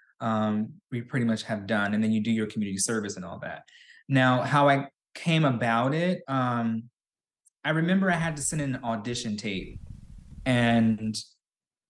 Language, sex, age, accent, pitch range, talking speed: English, male, 20-39, American, 110-135 Hz, 165 wpm